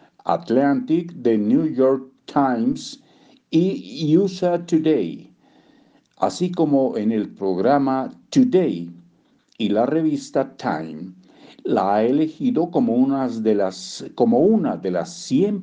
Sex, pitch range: male, 110-180 Hz